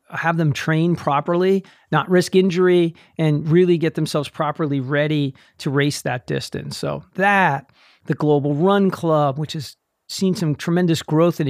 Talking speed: 155 wpm